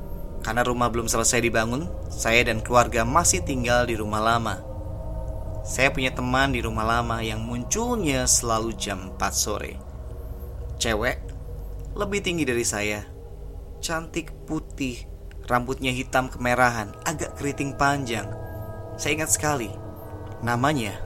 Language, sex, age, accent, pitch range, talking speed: Indonesian, male, 20-39, native, 100-125 Hz, 120 wpm